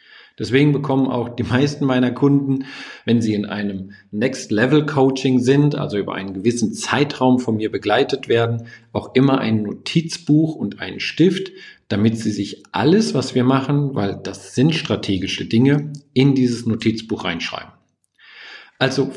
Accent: German